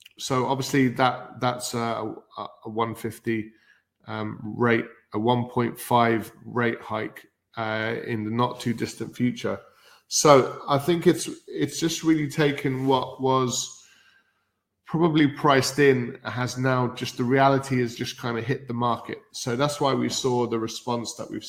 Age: 20-39